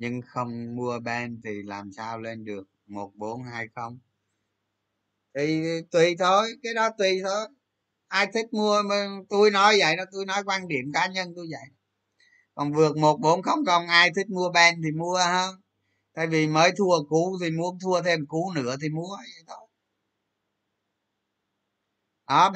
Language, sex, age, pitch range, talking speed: Vietnamese, male, 20-39, 110-185 Hz, 170 wpm